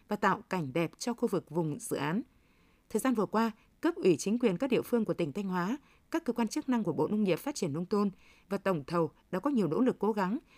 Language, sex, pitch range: Vietnamese, female, 180-240 Hz